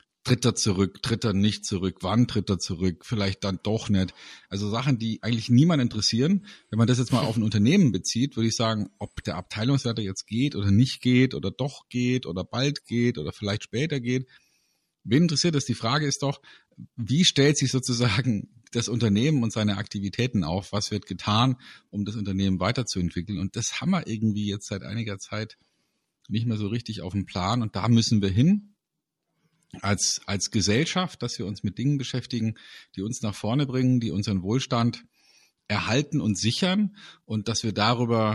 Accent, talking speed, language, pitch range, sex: German, 190 wpm, German, 105-130 Hz, male